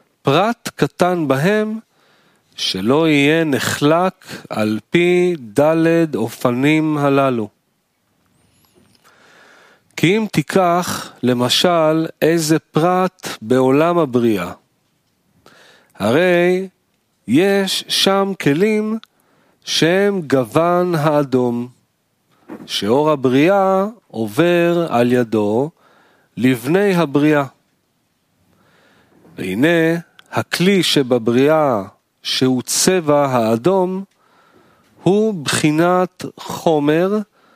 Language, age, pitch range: Hebrew, 40-59, 130-185 Hz